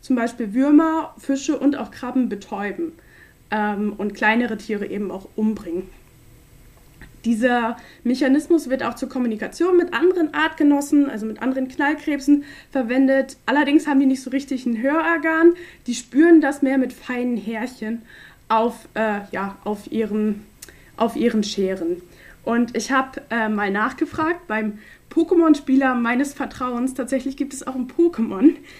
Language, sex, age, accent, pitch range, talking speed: German, female, 20-39, German, 215-275 Hz, 140 wpm